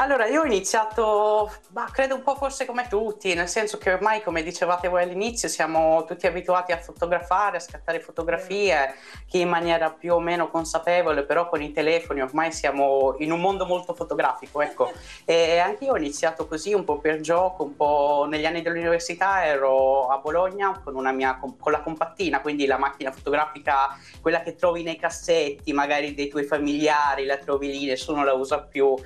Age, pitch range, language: 30-49, 145-185 Hz, Italian